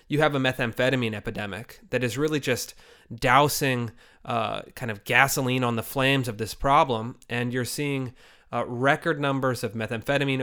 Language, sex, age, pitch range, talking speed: English, male, 30-49, 115-135 Hz, 160 wpm